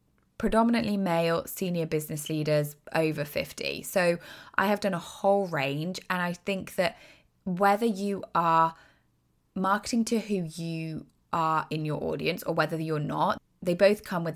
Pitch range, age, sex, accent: 155-210 Hz, 20-39, female, British